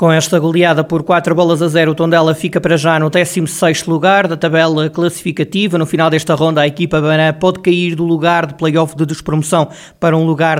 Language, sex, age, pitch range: Portuguese, male, 20-39, 155-180 Hz